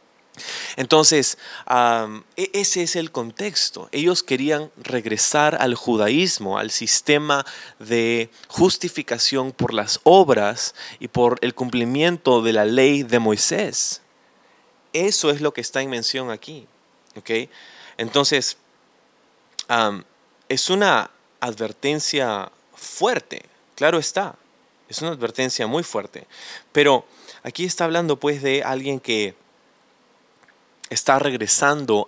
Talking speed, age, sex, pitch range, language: 110 wpm, 30-49, male, 115-145 Hz, Spanish